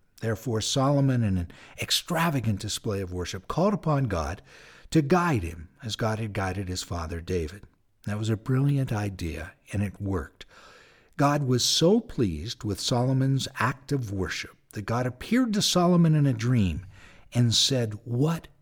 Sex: male